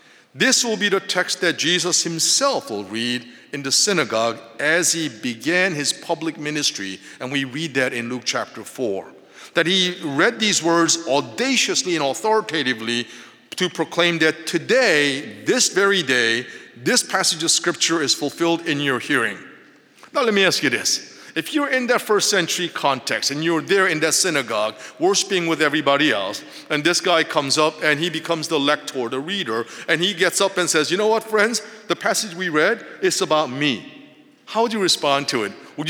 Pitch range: 150-210 Hz